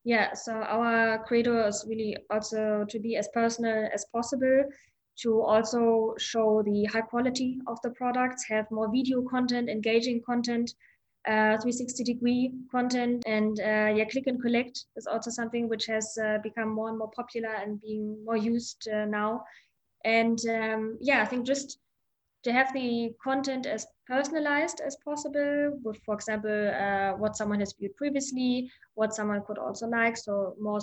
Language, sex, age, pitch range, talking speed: English, female, 20-39, 215-245 Hz, 165 wpm